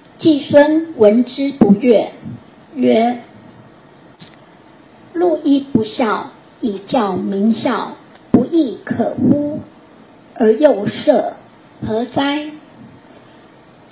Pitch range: 215-295 Hz